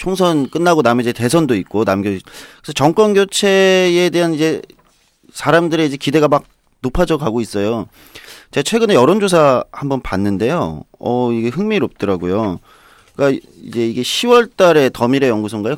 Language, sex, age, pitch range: Korean, male, 40-59, 110-165 Hz